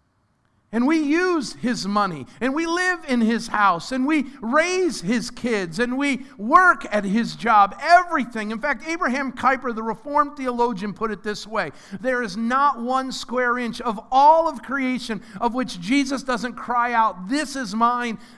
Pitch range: 180-265 Hz